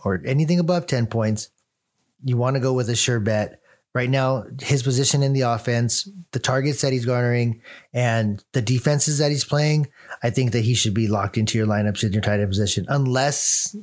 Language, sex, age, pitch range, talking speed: English, male, 30-49, 110-135 Hz, 205 wpm